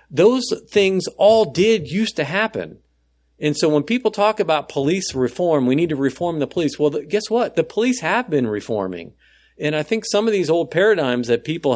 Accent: American